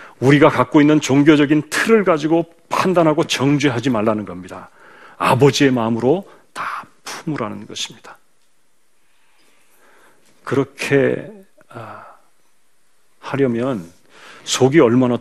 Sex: male